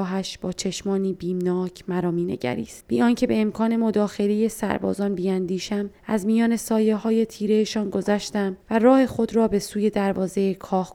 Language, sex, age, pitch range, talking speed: Persian, female, 20-39, 185-220 Hz, 150 wpm